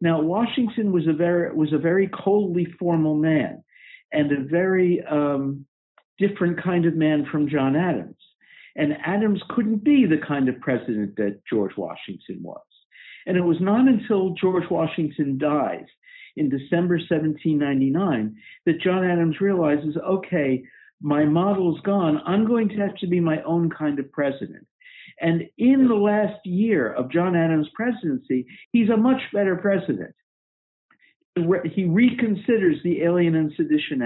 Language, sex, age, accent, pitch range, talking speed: English, male, 60-79, American, 150-185 Hz, 150 wpm